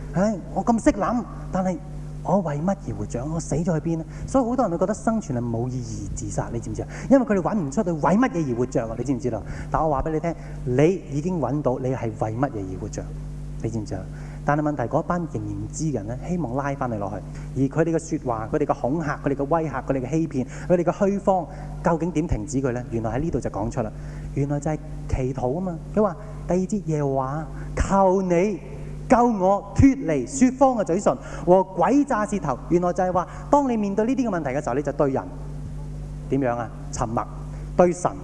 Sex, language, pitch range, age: male, Japanese, 135-175 Hz, 20-39